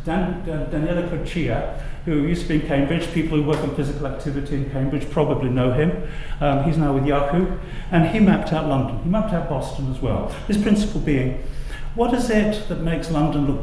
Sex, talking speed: male, 210 wpm